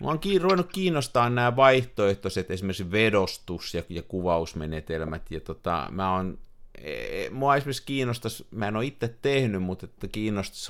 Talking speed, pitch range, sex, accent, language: 150 wpm, 95-125 Hz, male, native, Finnish